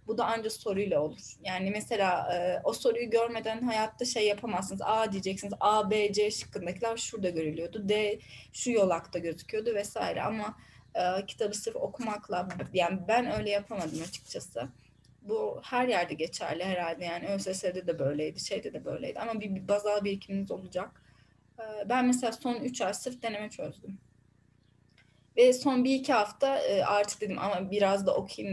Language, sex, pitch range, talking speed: Turkish, female, 185-230 Hz, 150 wpm